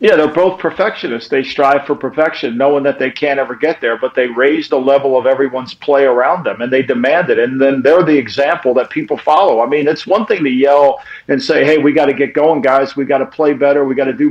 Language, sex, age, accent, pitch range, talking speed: English, male, 50-69, American, 140-165 Hz, 260 wpm